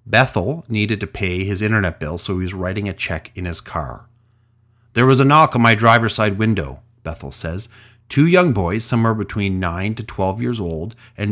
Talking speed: 200 wpm